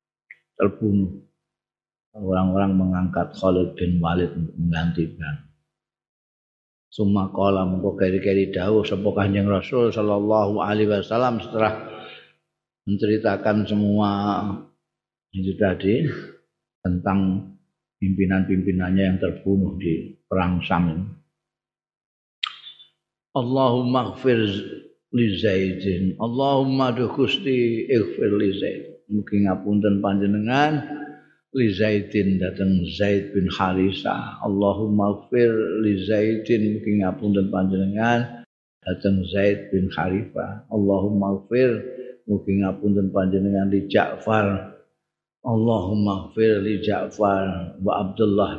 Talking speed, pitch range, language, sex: 80 wpm, 95-110 Hz, Indonesian, male